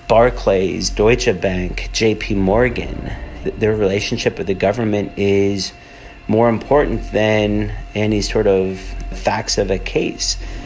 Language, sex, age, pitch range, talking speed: English, male, 40-59, 100-110 Hz, 120 wpm